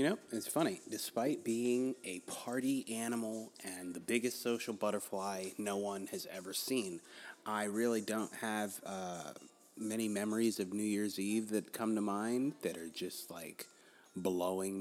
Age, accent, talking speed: 30-49, American, 160 wpm